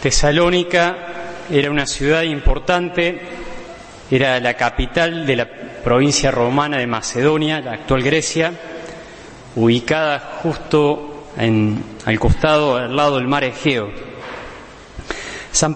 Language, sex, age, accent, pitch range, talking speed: Spanish, male, 30-49, Argentinian, 130-165 Hz, 105 wpm